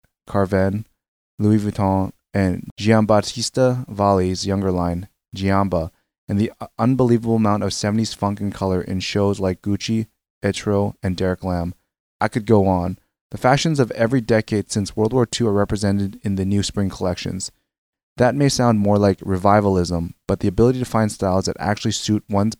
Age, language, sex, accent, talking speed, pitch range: 20-39, English, male, American, 165 wpm, 95-110 Hz